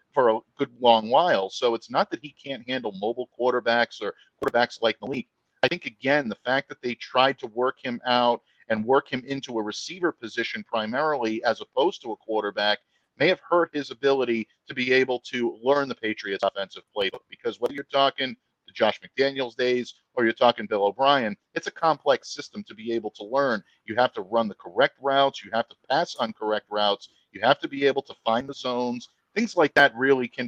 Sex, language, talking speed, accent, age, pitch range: male, English, 210 wpm, American, 50-69, 110-135 Hz